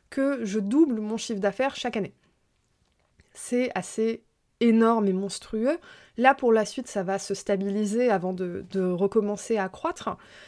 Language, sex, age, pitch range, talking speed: French, female, 20-39, 205-260 Hz, 155 wpm